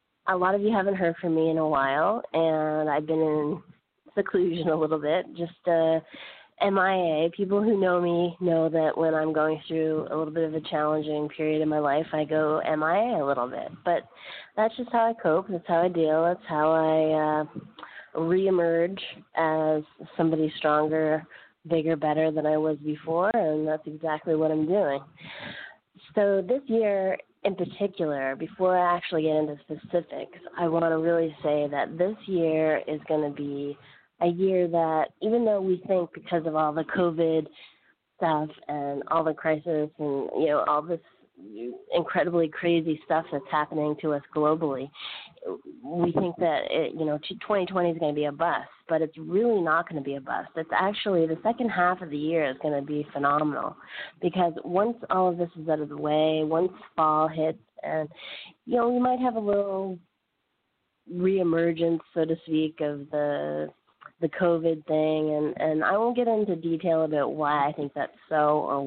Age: 20-39